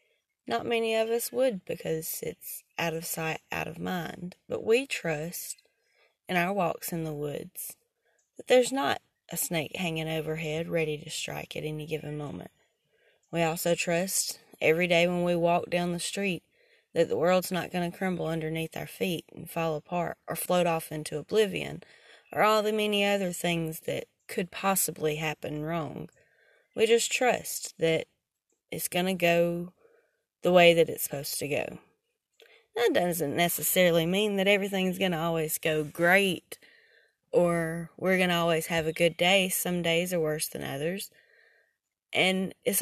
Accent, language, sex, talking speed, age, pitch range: American, English, female, 165 wpm, 20-39, 165-205 Hz